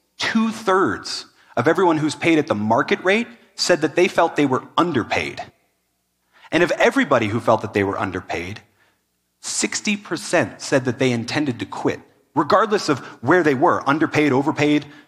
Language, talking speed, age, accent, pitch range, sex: French, 155 wpm, 30-49, American, 115-165 Hz, male